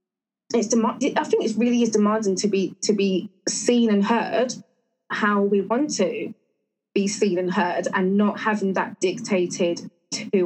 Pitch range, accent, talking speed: 190-225 Hz, British, 165 wpm